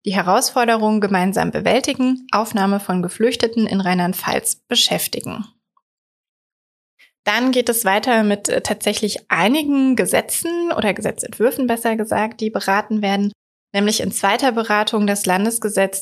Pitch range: 195-240 Hz